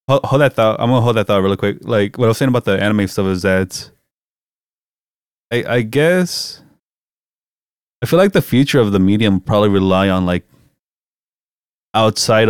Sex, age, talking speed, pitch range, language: male, 20-39, 180 wpm, 95-120 Hz, English